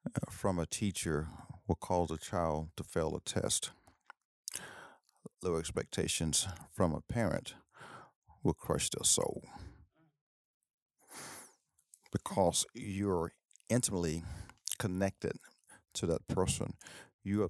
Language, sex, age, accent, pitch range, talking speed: English, male, 50-69, American, 85-105 Hz, 100 wpm